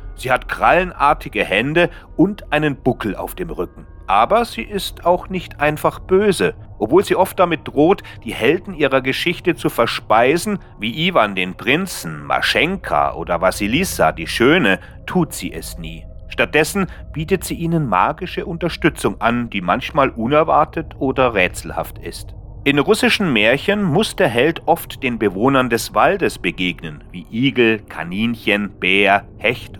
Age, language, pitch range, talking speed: 40-59, German, 95-155 Hz, 145 wpm